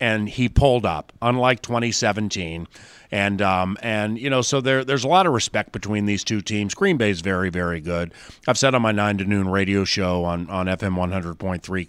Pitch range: 95-115 Hz